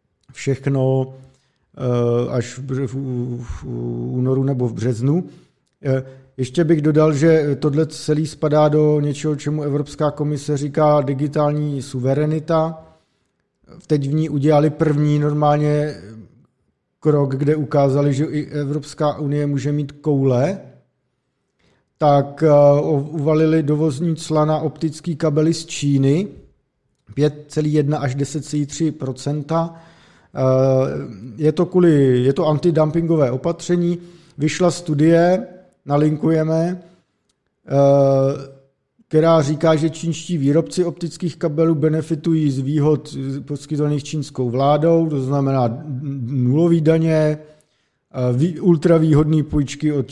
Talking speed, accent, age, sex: 100 wpm, native, 50-69, male